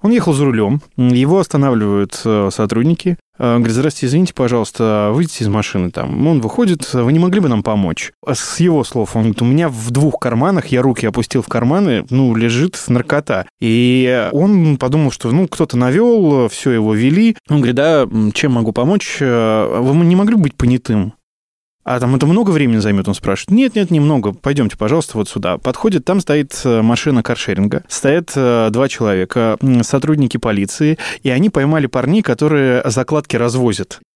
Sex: male